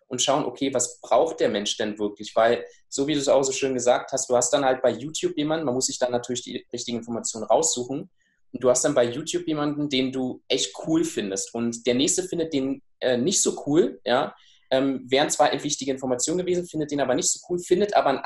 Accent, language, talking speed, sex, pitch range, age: German, German, 240 wpm, male, 120-150 Hz, 20-39